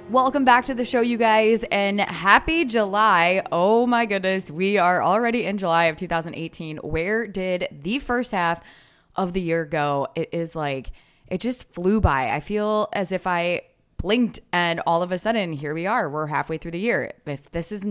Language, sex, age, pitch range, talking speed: English, female, 20-39, 155-210 Hz, 195 wpm